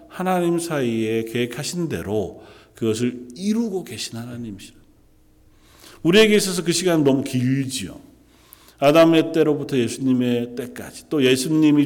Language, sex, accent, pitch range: Korean, male, native, 115-160 Hz